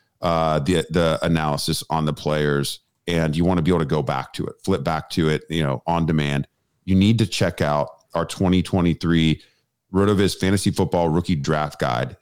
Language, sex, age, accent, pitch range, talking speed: English, male, 40-59, American, 80-95 Hz, 190 wpm